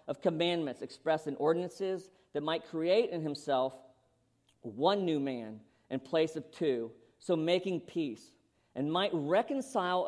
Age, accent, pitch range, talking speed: 50-69, American, 145-230 Hz, 135 wpm